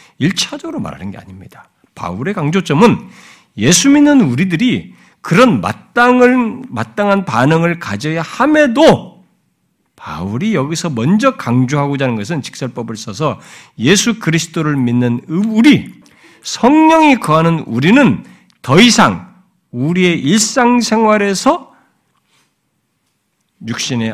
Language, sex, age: Korean, male, 50-69